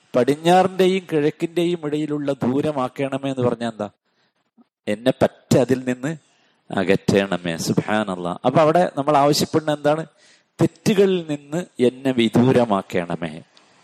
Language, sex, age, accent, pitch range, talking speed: Malayalam, male, 50-69, native, 125-170 Hz, 85 wpm